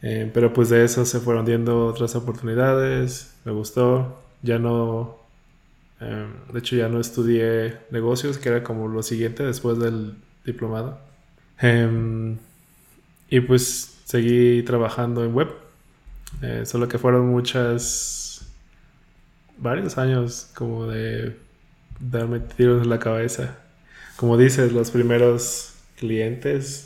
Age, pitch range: 20-39, 115-130 Hz